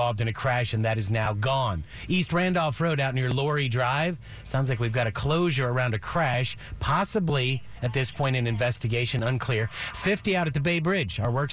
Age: 50-69